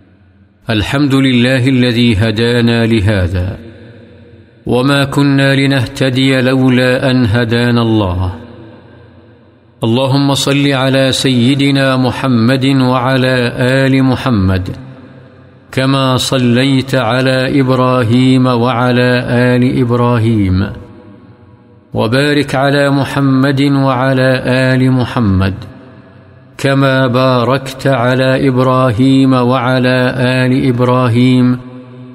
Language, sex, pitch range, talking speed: Urdu, male, 120-130 Hz, 75 wpm